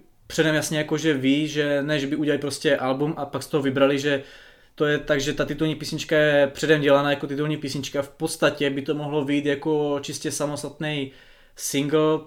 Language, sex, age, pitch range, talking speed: Czech, male, 20-39, 140-150 Hz, 200 wpm